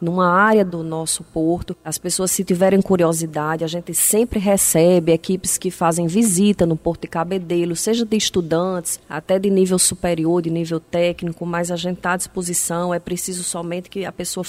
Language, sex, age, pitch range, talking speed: Portuguese, female, 30-49, 175-210 Hz, 180 wpm